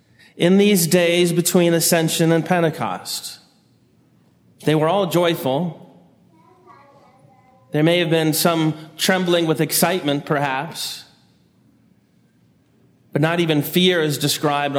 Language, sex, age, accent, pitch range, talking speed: English, male, 30-49, American, 155-200 Hz, 105 wpm